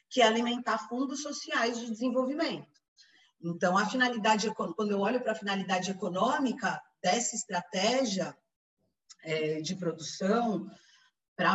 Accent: Brazilian